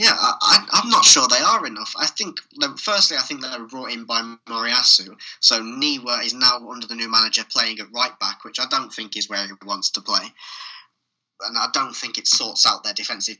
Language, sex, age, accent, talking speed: English, male, 10-29, British, 220 wpm